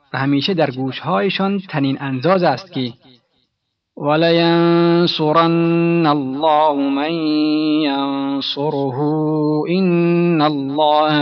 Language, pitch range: Persian, 140-170 Hz